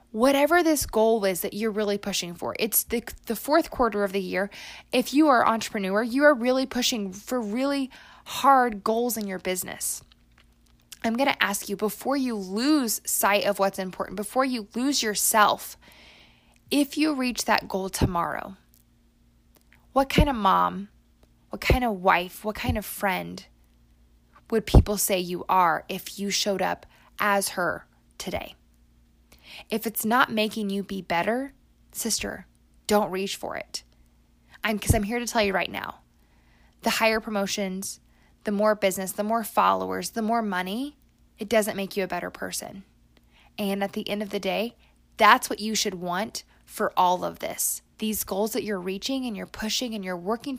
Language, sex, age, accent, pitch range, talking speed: English, female, 20-39, American, 180-235 Hz, 170 wpm